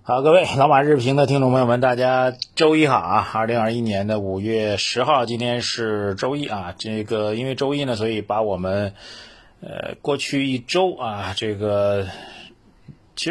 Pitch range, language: 105-135 Hz, Chinese